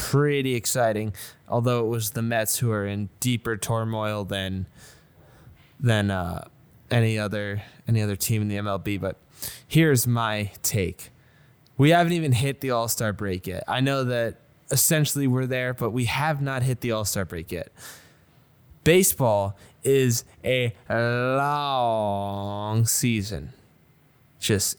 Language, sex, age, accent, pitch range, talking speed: English, male, 20-39, American, 110-145 Hz, 135 wpm